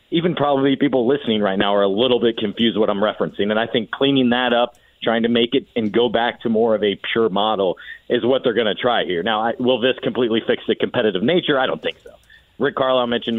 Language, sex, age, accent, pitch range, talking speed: English, male, 40-59, American, 110-130 Hz, 245 wpm